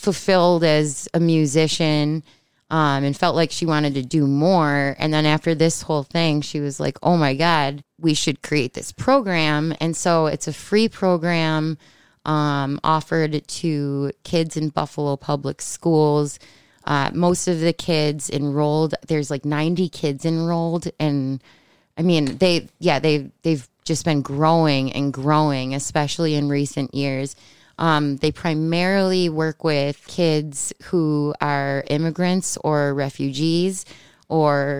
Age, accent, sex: 20-39, American, female